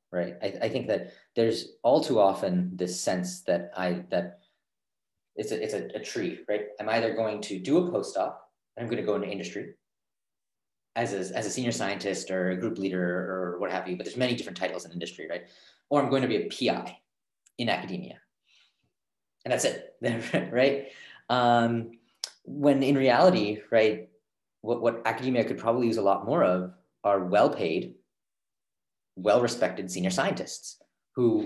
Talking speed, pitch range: 175 wpm, 100-140 Hz